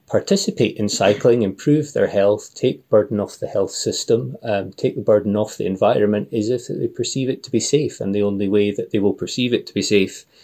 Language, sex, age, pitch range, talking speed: English, male, 30-49, 100-110 Hz, 225 wpm